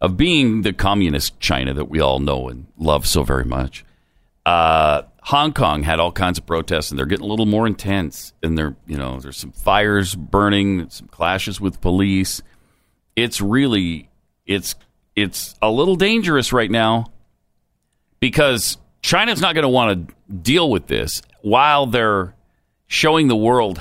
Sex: male